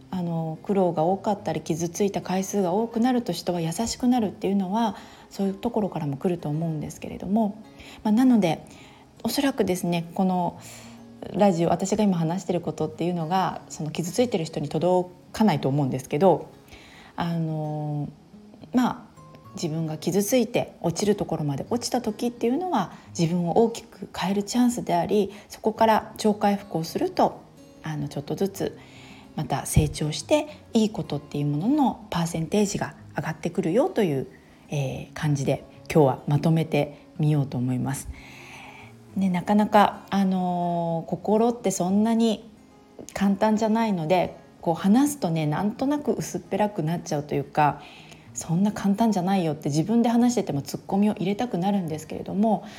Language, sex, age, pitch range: Japanese, female, 40-59, 160-215 Hz